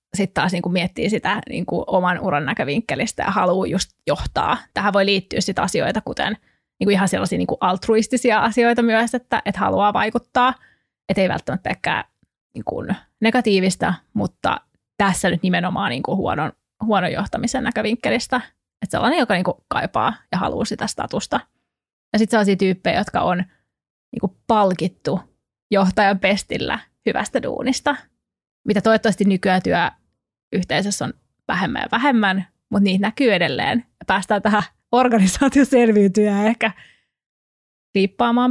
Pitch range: 190-230 Hz